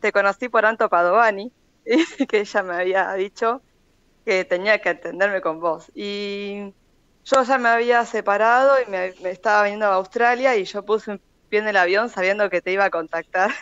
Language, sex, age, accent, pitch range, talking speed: Spanish, female, 20-39, Argentinian, 185-230 Hz, 190 wpm